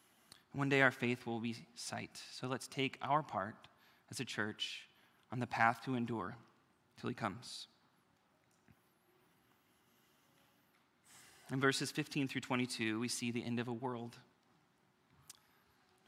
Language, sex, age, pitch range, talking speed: English, male, 30-49, 120-140 Hz, 130 wpm